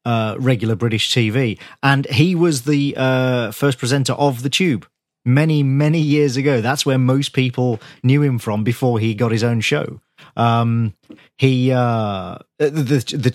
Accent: British